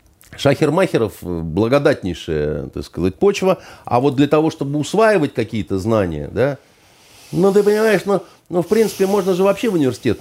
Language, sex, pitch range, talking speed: Russian, male, 110-155 Hz, 155 wpm